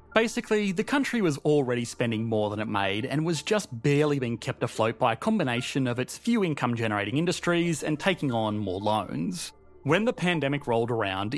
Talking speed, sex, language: 185 wpm, male, English